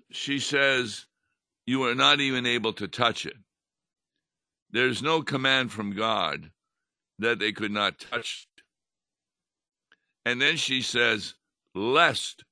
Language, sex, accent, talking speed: English, male, American, 120 wpm